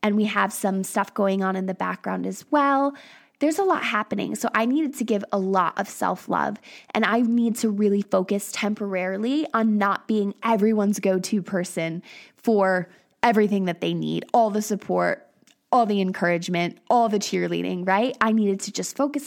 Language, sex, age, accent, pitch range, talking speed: English, female, 20-39, American, 200-240 Hz, 180 wpm